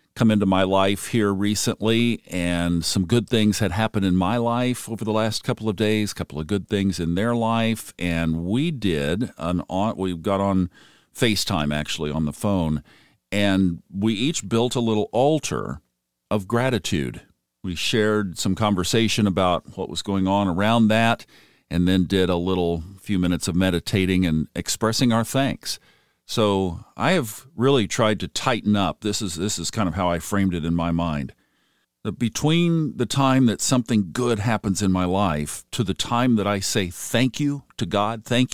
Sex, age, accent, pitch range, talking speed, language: male, 50-69, American, 90-115 Hz, 180 wpm, English